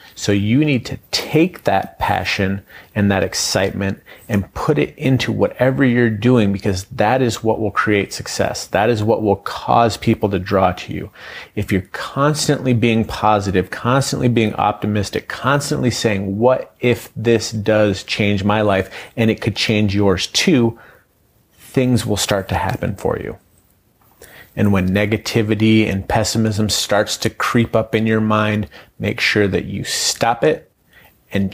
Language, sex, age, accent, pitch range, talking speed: English, male, 30-49, American, 100-120 Hz, 160 wpm